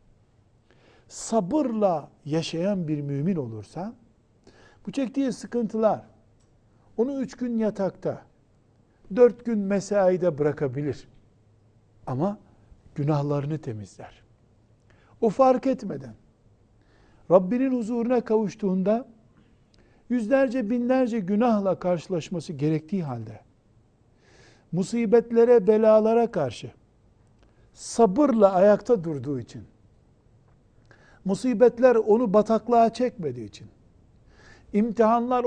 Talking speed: 75 wpm